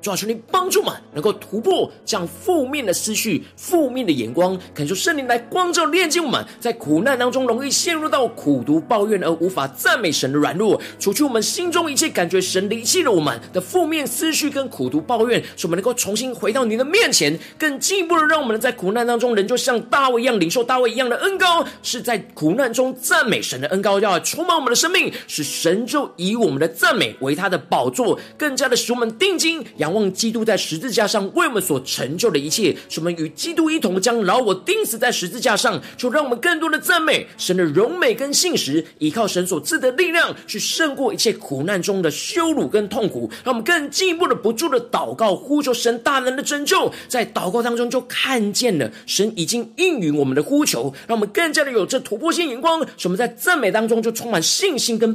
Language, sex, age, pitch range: Chinese, male, 40-59, 210-310 Hz